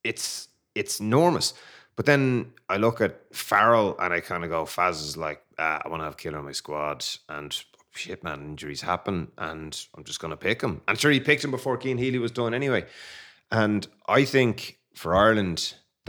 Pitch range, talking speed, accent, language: 75-115 Hz, 210 wpm, Irish, English